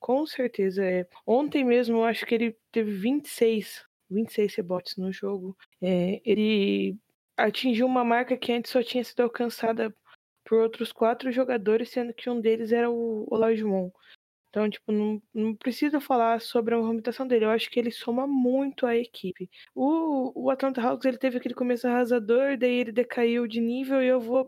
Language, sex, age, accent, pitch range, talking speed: Portuguese, female, 20-39, Brazilian, 220-255 Hz, 175 wpm